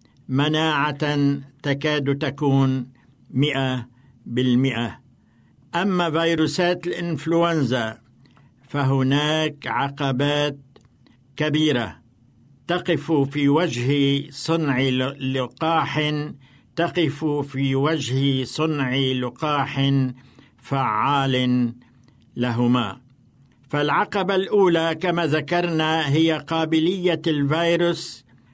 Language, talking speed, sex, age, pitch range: Arabic, 65 wpm, male, 60-79, 130-160 Hz